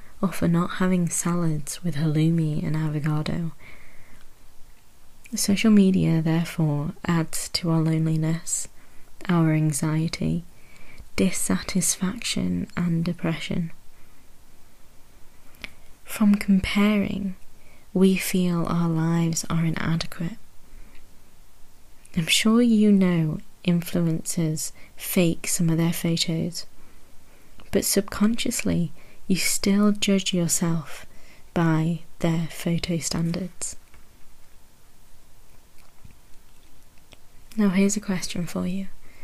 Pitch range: 160-190 Hz